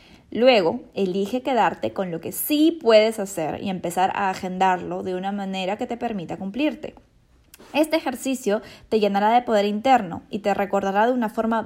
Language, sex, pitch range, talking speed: Spanish, female, 195-250 Hz, 170 wpm